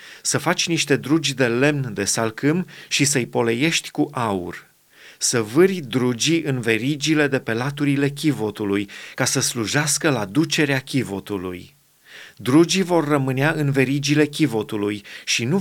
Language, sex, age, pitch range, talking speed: Romanian, male, 30-49, 125-155 Hz, 140 wpm